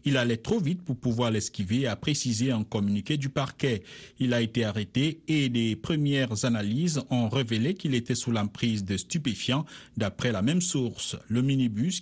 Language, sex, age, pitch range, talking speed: Italian, male, 50-69, 115-145 Hz, 175 wpm